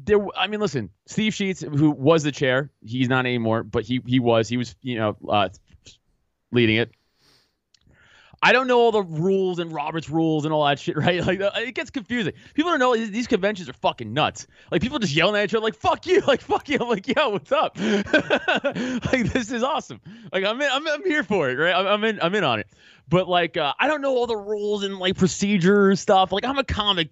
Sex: male